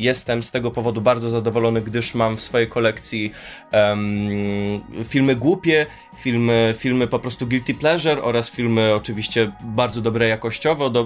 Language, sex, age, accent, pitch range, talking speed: Polish, male, 20-39, native, 110-130 Hz, 135 wpm